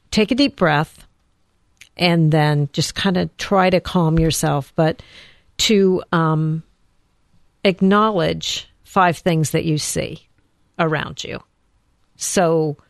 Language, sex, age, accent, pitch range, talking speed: English, female, 50-69, American, 155-185 Hz, 115 wpm